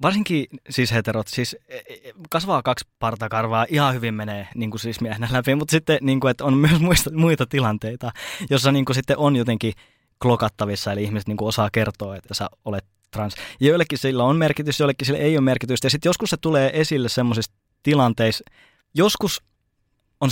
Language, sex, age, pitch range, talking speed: Finnish, male, 20-39, 110-135 Hz, 170 wpm